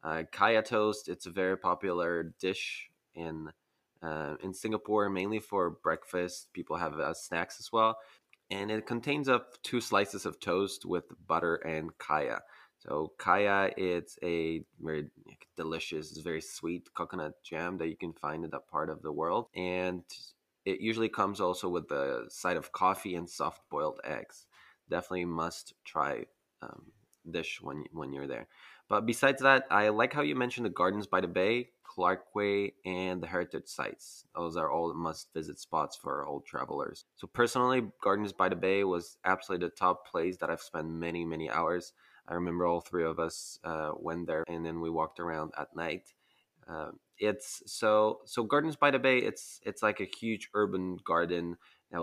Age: 20-39